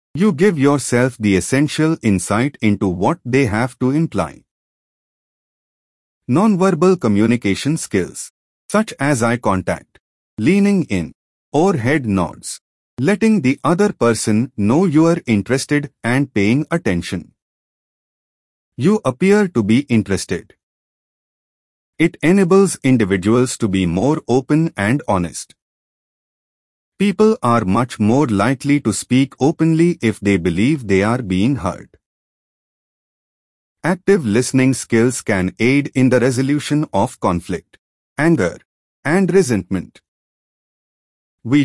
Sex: male